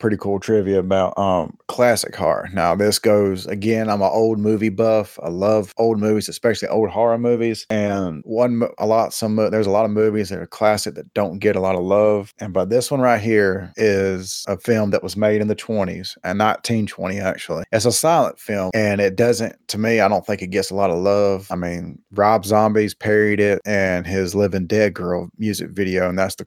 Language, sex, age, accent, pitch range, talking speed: English, male, 30-49, American, 100-110 Hz, 220 wpm